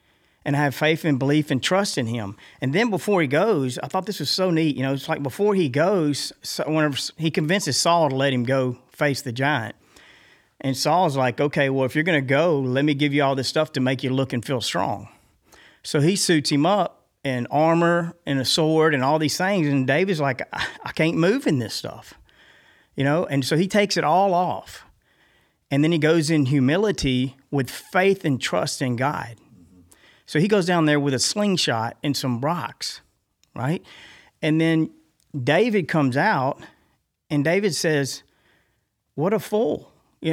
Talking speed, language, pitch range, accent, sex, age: 195 wpm, English, 135-175 Hz, American, male, 40-59